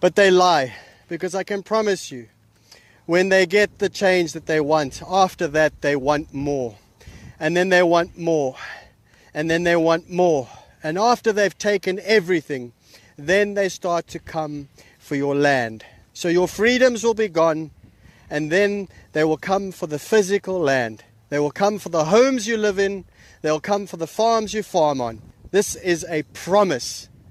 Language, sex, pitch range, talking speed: English, male, 145-190 Hz, 175 wpm